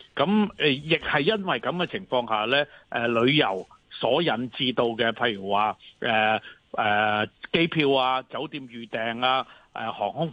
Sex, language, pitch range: male, Chinese, 120-155 Hz